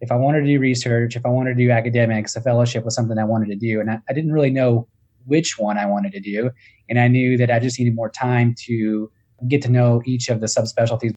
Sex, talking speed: male, 265 wpm